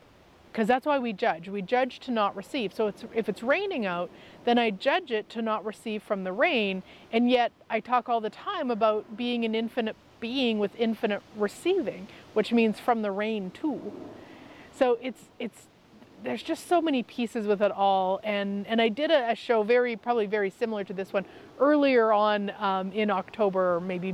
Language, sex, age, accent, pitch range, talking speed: English, female, 30-49, American, 205-255 Hz, 195 wpm